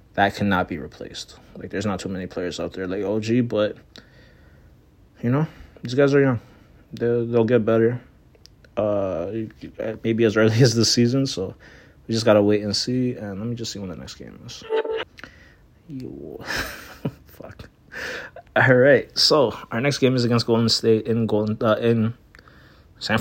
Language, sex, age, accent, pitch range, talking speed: English, male, 20-39, American, 100-115 Hz, 175 wpm